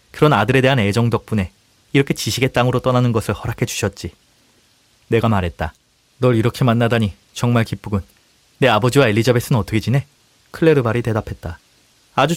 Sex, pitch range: male, 105-135 Hz